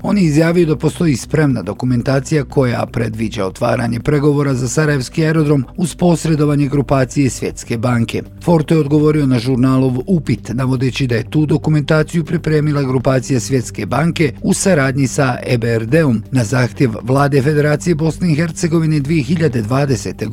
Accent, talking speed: native, 135 wpm